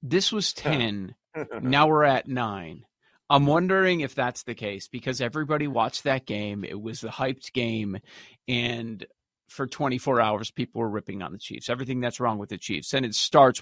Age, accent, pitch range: 30-49, American, 120-155 Hz